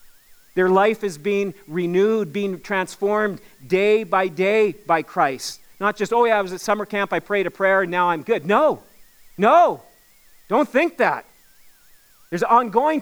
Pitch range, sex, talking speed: 205-305 Hz, male, 165 wpm